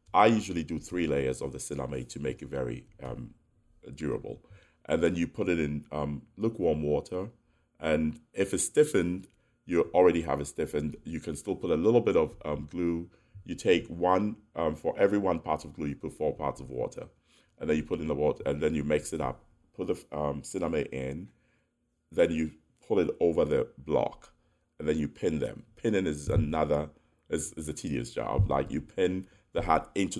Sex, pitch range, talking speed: male, 75-100 Hz, 205 wpm